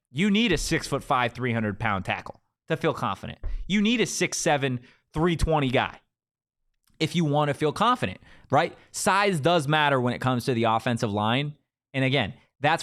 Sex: male